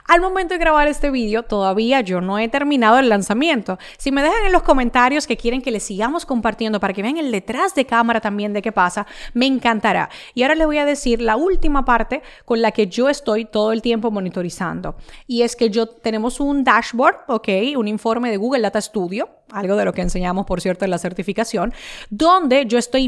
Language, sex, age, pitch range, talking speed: Spanish, female, 30-49, 210-275 Hz, 215 wpm